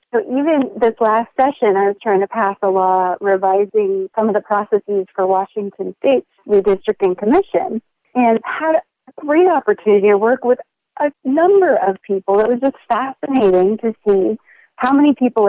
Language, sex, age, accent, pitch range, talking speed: English, female, 40-59, American, 200-255 Hz, 170 wpm